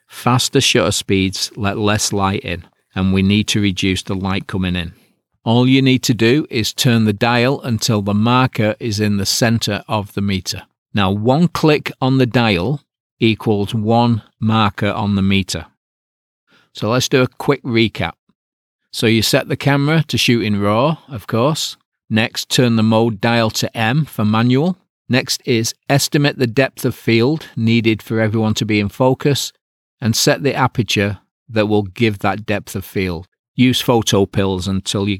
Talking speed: 175 wpm